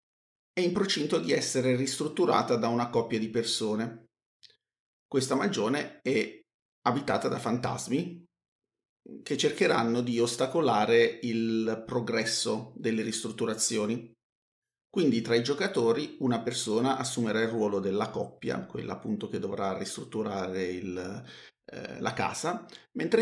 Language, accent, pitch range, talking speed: Italian, native, 115-135 Hz, 115 wpm